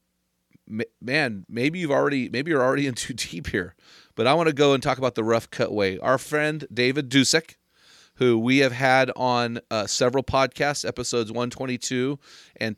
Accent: American